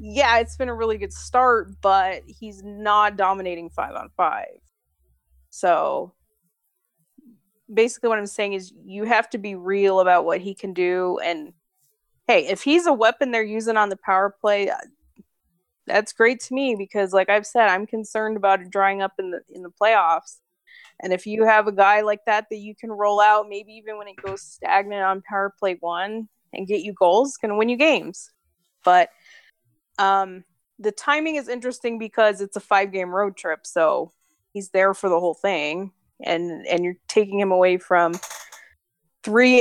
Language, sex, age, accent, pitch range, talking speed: English, female, 20-39, American, 180-220 Hz, 180 wpm